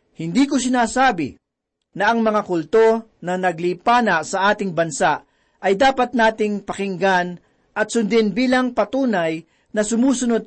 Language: Filipino